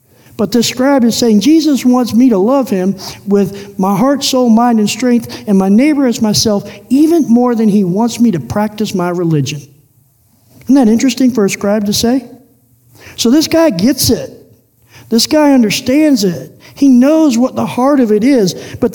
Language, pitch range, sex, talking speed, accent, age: English, 170-255 Hz, male, 185 wpm, American, 50-69